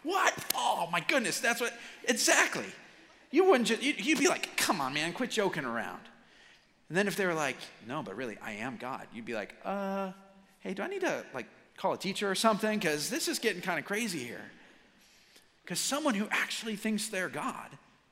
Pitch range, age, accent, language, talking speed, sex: 145-225 Hz, 40-59, American, English, 200 wpm, male